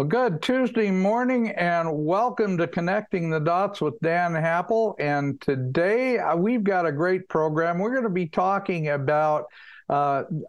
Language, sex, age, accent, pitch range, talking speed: English, male, 60-79, American, 145-185 Hz, 155 wpm